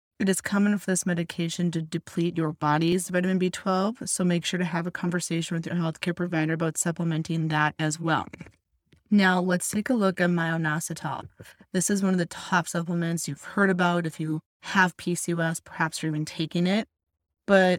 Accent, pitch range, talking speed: American, 165-195 Hz, 185 wpm